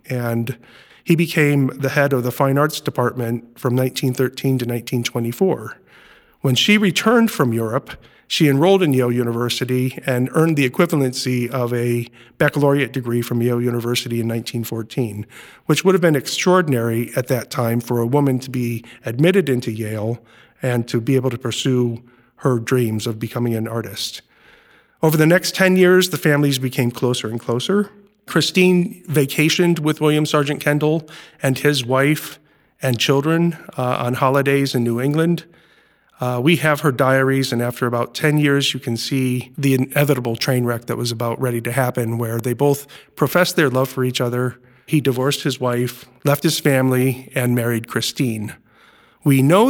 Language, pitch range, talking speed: English, 120-145 Hz, 165 wpm